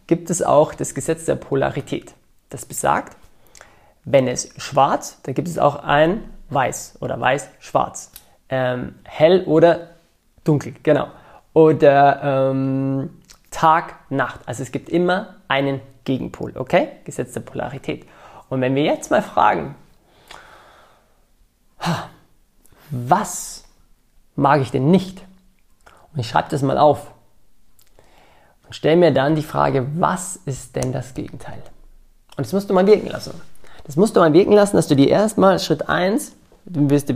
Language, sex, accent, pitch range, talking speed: German, male, German, 135-180 Hz, 140 wpm